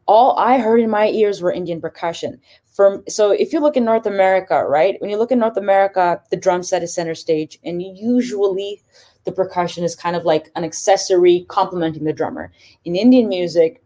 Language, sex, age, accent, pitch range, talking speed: English, female, 20-39, American, 170-205 Hz, 195 wpm